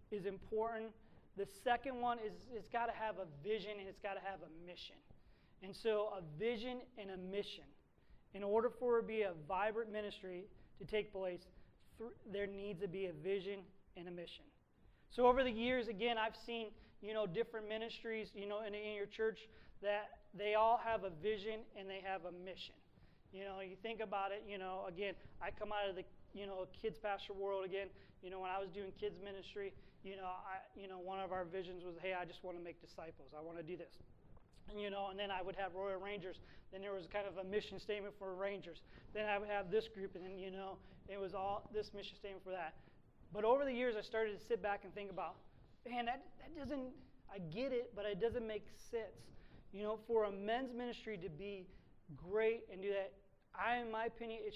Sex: male